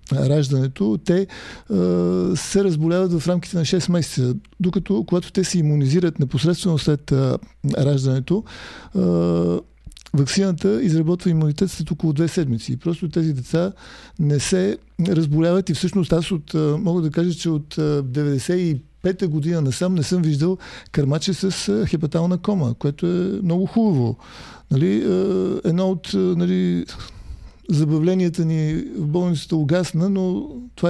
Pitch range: 140-175 Hz